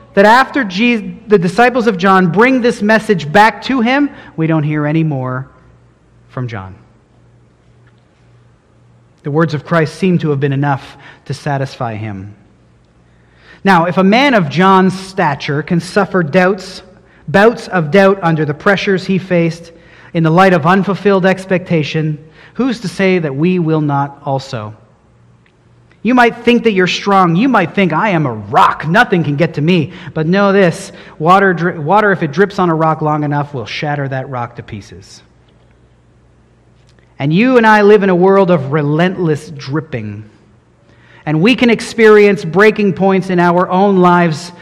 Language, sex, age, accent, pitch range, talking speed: English, male, 40-59, American, 145-200 Hz, 165 wpm